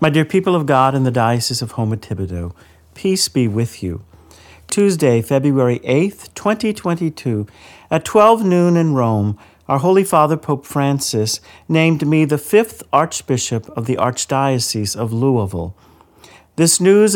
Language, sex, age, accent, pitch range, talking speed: English, male, 50-69, American, 110-160 Hz, 140 wpm